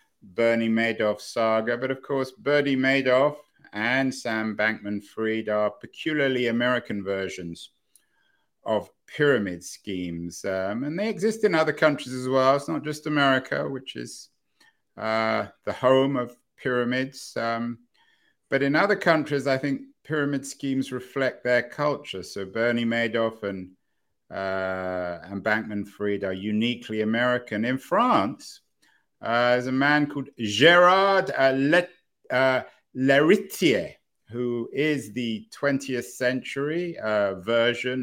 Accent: British